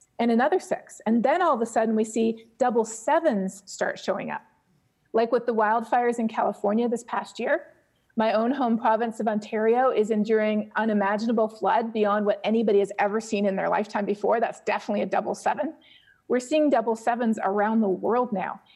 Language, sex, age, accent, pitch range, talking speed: English, female, 30-49, American, 210-255 Hz, 185 wpm